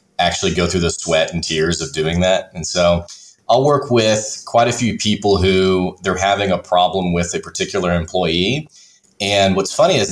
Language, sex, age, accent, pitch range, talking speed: English, male, 30-49, American, 90-110 Hz, 190 wpm